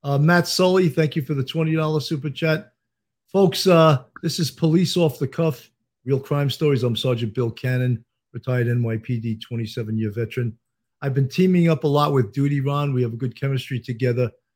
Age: 50-69